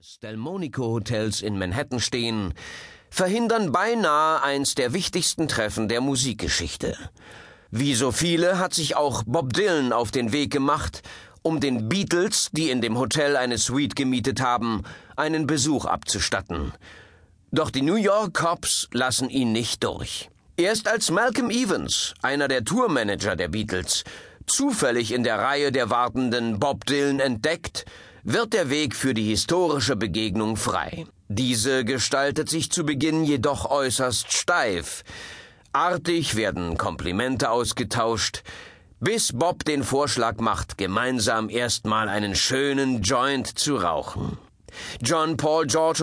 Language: German